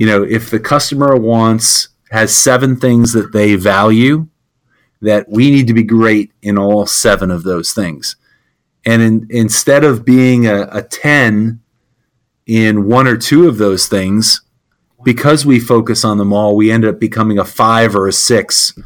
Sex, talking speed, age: male, 170 wpm, 30-49